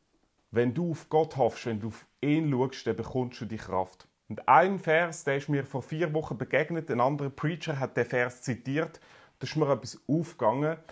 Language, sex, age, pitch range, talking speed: German, male, 30-49, 125-165 Hz, 205 wpm